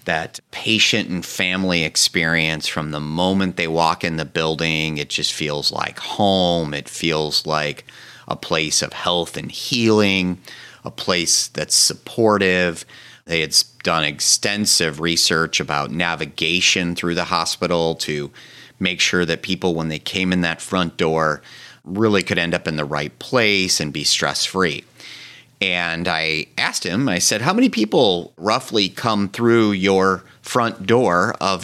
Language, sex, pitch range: English, male, 80-105 Hz